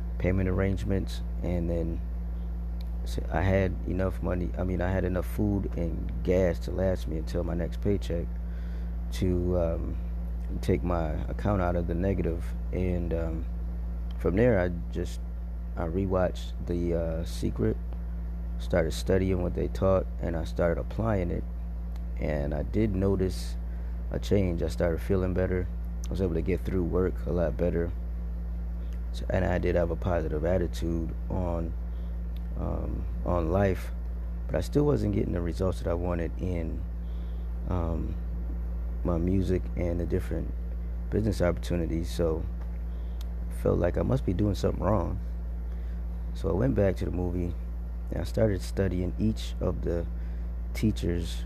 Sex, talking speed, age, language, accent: male, 150 wpm, 20-39, English, American